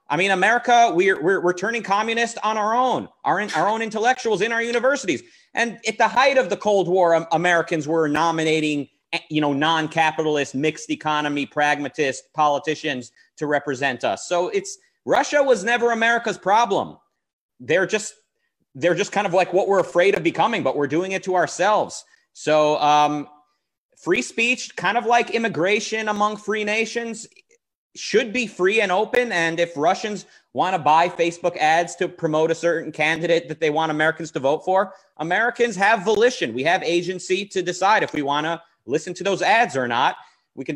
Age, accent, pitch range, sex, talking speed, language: 30-49, American, 150-215 Hz, male, 175 wpm, English